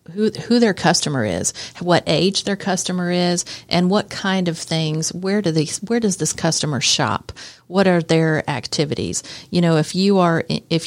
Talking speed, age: 180 wpm, 40-59